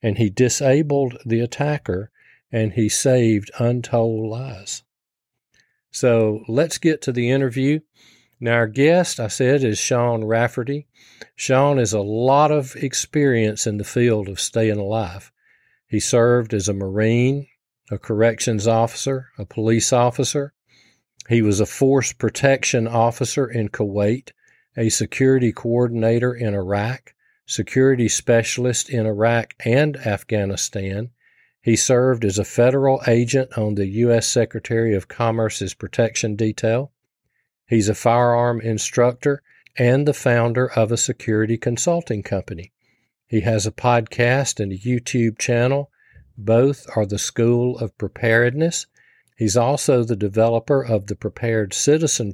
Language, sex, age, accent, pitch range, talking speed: English, male, 50-69, American, 110-125 Hz, 130 wpm